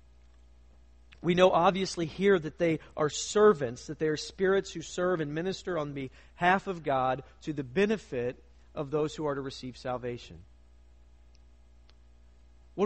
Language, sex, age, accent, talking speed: English, male, 40-59, American, 145 wpm